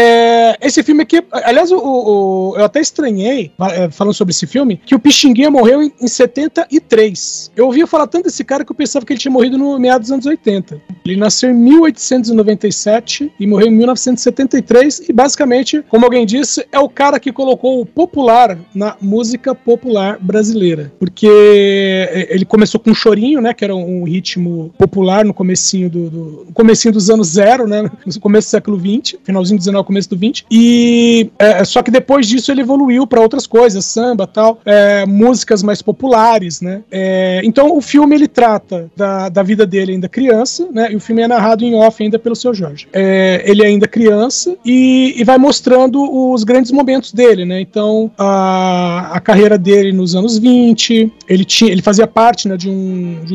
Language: Portuguese